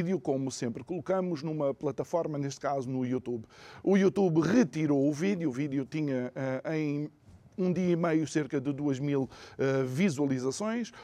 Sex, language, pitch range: male, Portuguese, 135-170 Hz